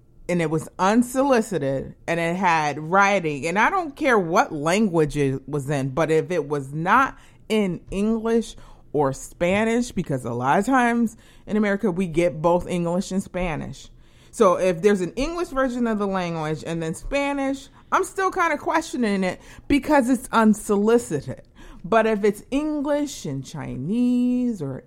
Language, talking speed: English, 160 wpm